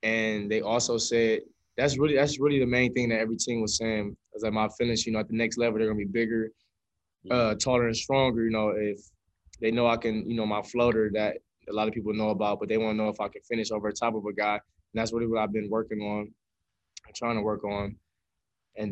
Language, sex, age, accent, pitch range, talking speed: English, male, 20-39, American, 105-120 Hz, 250 wpm